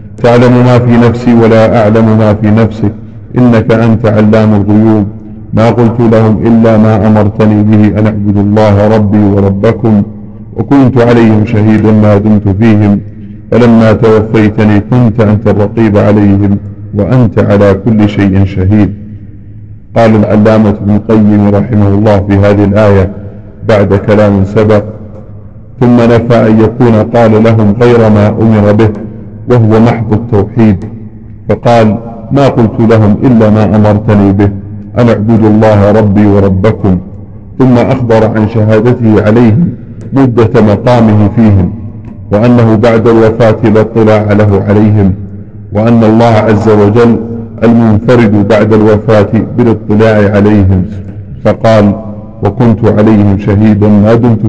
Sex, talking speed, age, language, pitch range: male, 120 wpm, 50-69, Arabic, 105-115 Hz